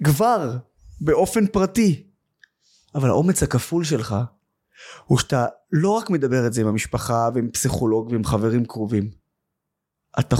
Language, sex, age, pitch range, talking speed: Hebrew, male, 20-39, 130-185 Hz, 125 wpm